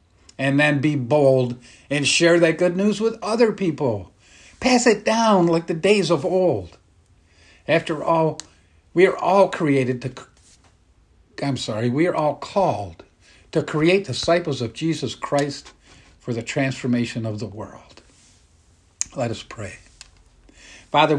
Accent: American